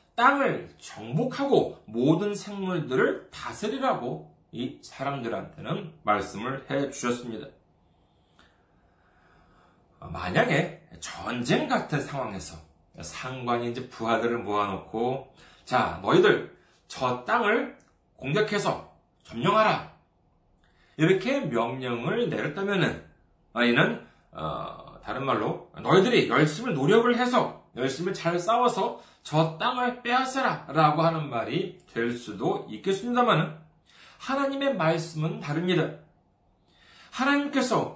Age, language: 30-49, Korean